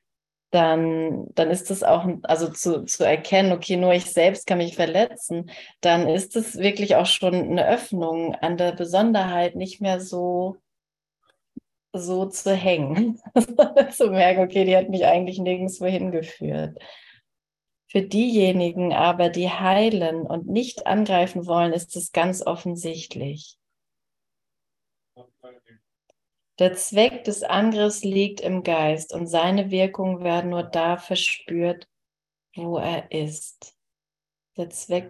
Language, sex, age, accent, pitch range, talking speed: German, female, 30-49, German, 165-190 Hz, 125 wpm